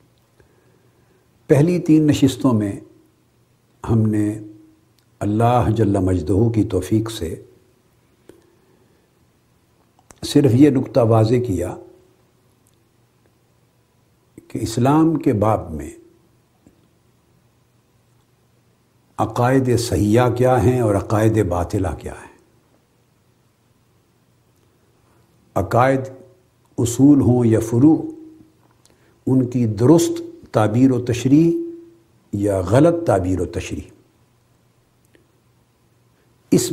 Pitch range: 110-130 Hz